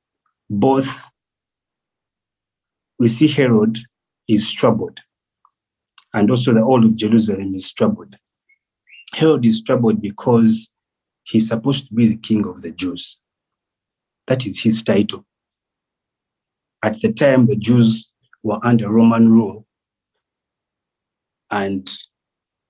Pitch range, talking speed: 105-120 Hz, 110 wpm